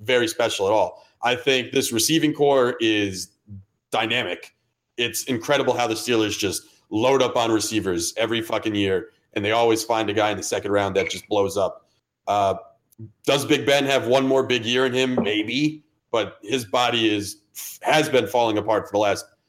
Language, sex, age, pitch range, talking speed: English, male, 30-49, 110-150 Hz, 190 wpm